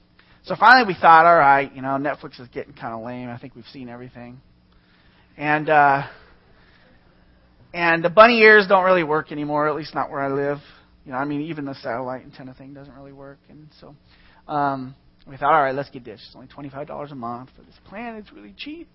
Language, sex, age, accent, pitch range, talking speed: English, male, 30-49, American, 120-165 Hz, 215 wpm